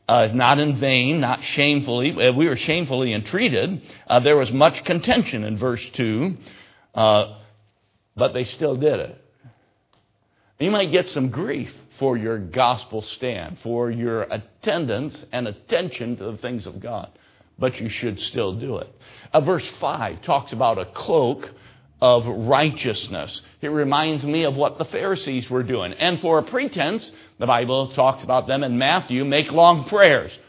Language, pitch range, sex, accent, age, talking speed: English, 115-165 Hz, male, American, 60-79, 155 wpm